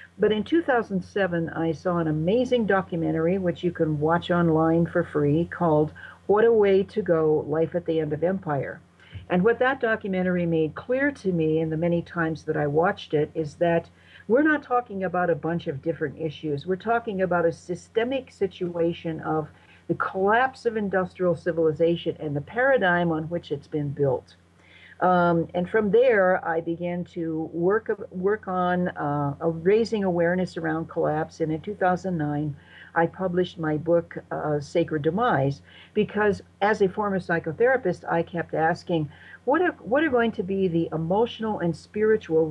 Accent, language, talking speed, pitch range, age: American, English, 165 wpm, 155-190 Hz, 60-79